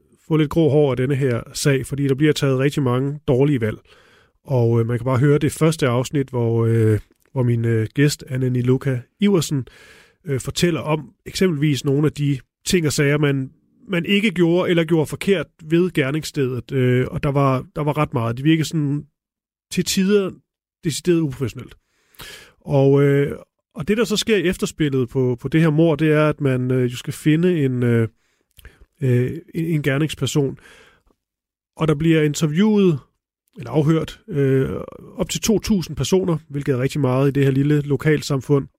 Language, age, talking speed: Danish, 30-49, 175 wpm